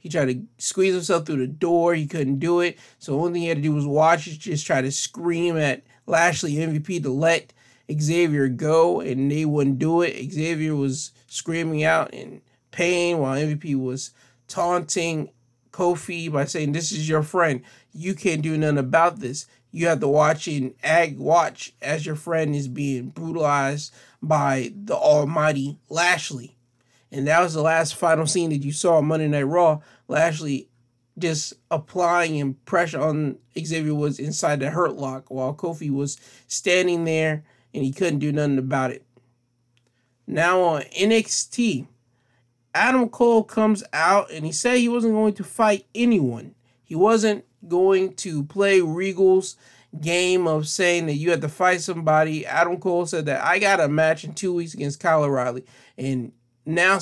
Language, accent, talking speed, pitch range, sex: English, American, 175 wpm, 135-175 Hz, male